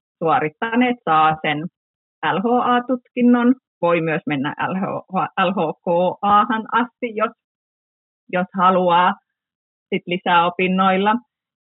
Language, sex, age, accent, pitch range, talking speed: Finnish, female, 30-49, native, 165-220 Hz, 75 wpm